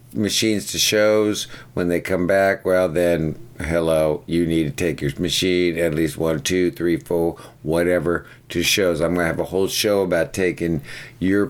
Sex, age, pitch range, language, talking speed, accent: male, 50-69, 85-105 Hz, English, 180 wpm, American